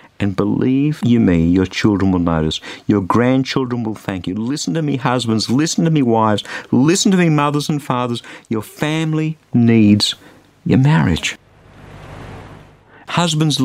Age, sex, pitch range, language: 50-69, male, 100-140 Hz, English